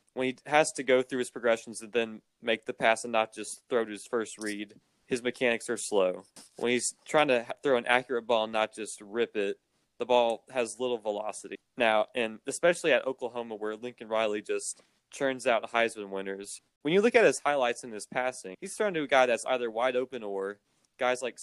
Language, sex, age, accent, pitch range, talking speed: English, male, 20-39, American, 110-135 Hz, 215 wpm